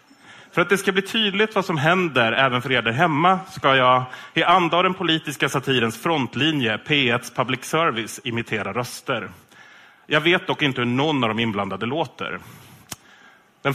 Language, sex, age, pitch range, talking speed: Swedish, male, 30-49, 120-175 Hz, 165 wpm